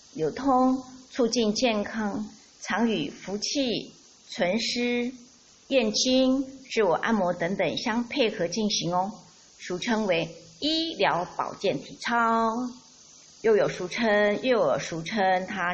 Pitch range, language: 175-245 Hz, Chinese